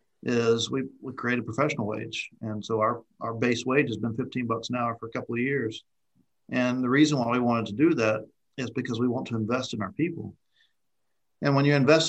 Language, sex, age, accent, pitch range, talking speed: English, male, 50-69, American, 120-140 Hz, 230 wpm